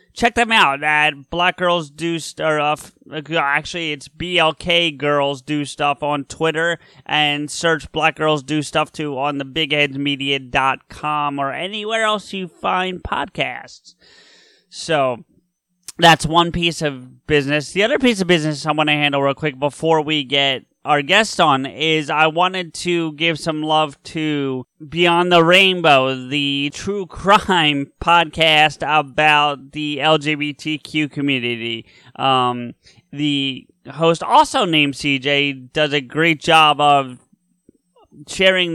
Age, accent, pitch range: 30-49, American, 140-165 Hz